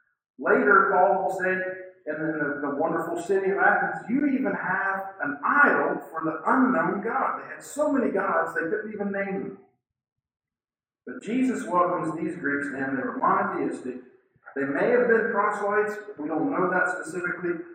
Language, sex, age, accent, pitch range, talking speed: English, male, 50-69, American, 135-200 Hz, 170 wpm